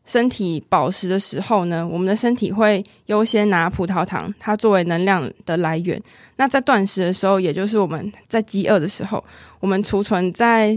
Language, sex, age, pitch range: Chinese, female, 20-39, 185-220 Hz